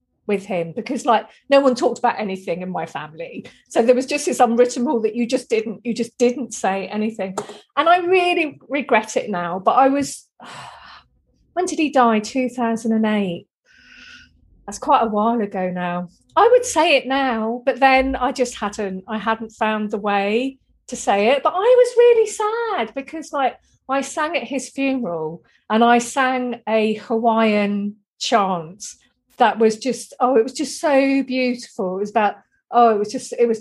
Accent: British